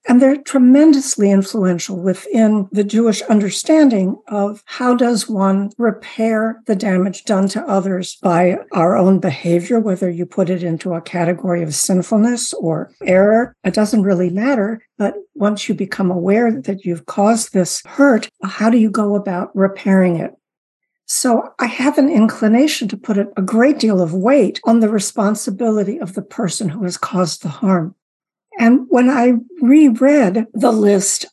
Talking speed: 160 wpm